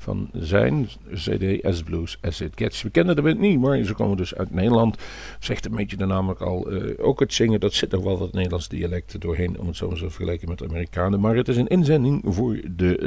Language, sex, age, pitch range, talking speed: Dutch, male, 50-69, 90-105 Hz, 240 wpm